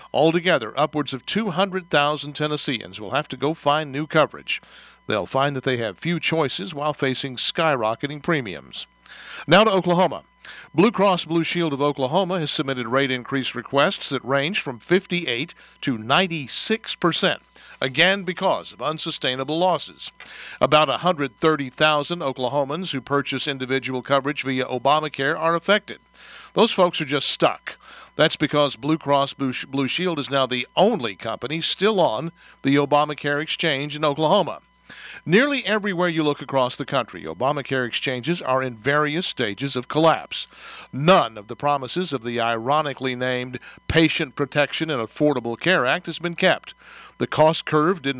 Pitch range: 135-165 Hz